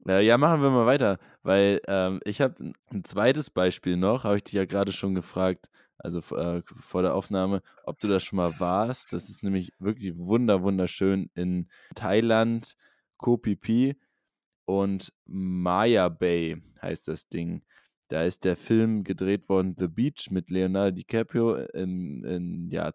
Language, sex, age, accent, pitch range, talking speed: German, male, 20-39, German, 90-110 Hz, 160 wpm